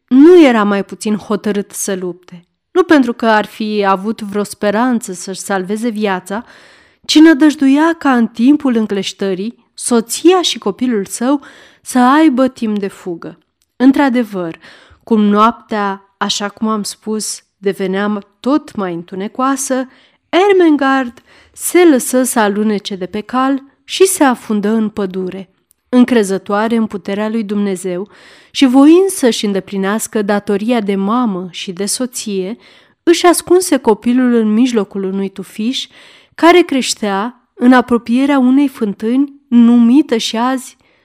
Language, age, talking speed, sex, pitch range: Romanian, 30-49, 130 wpm, female, 200-260 Hz